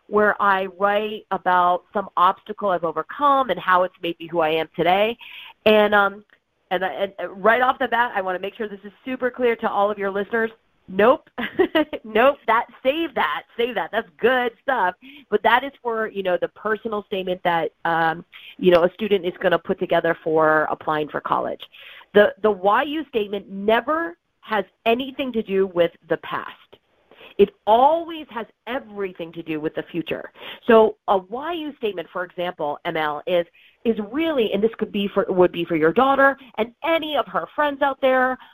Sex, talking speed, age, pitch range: female, 190 wpm, 30-49, 180-250 Hz